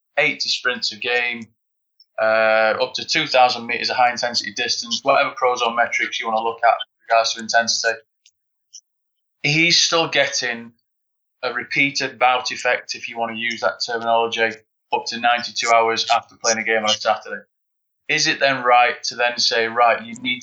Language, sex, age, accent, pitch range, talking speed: English, male, 20-39, British, 110-130 Hz, 180 wpm